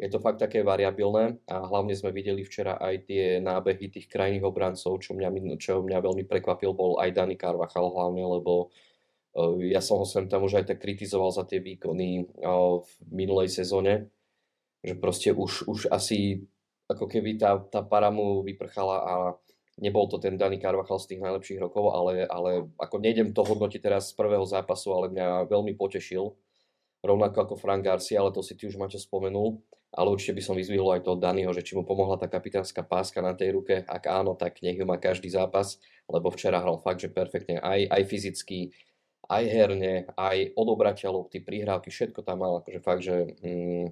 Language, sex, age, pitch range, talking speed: Slovak, male, 20-39, 90-100 Hz, 185 wpm